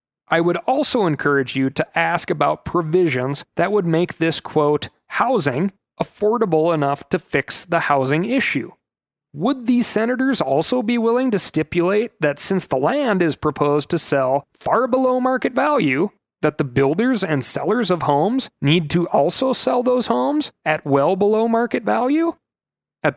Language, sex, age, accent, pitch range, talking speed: English, male, 30-49, American, 135-200 Hz, 160 wpm